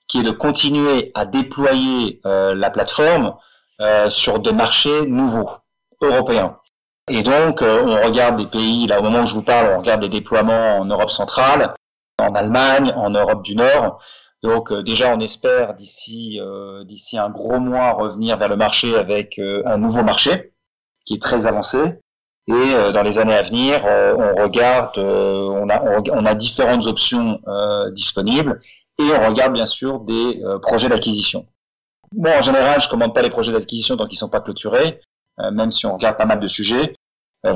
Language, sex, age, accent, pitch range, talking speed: French, male, 40-59, French, 105-125 Hz, 190 wpm